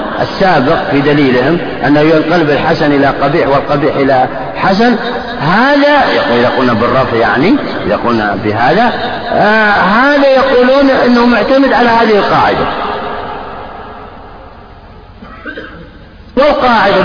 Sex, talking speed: male, 95 wpm